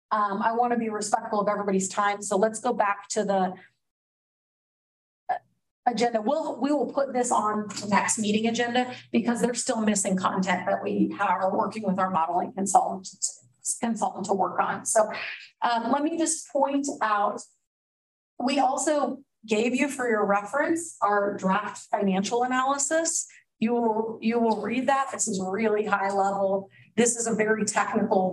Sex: female